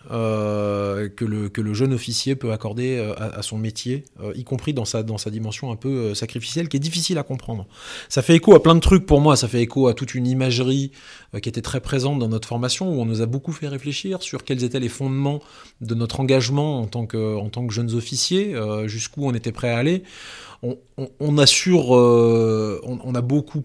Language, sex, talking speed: French, male, 215 wpm